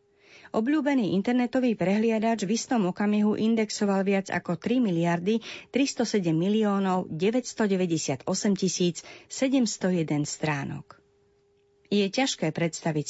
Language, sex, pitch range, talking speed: Slovak, female, 155-210 Hz, 85 wpm